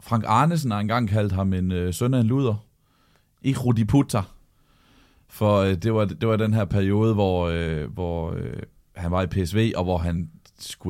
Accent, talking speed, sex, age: native, 200 wpm, male, 30-49